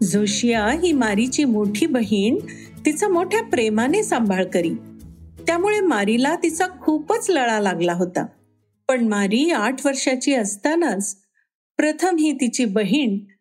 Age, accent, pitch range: 50-69, native, 215-310 Hz